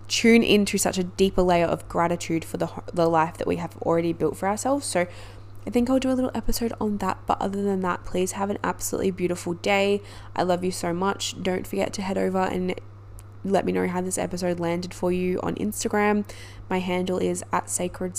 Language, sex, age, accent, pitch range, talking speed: English, female, 20-39, Australian, 160-190 Hz, 220 wpm